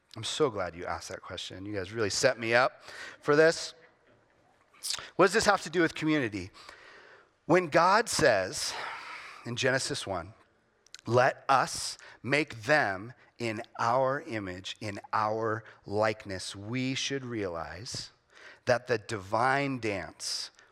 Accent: American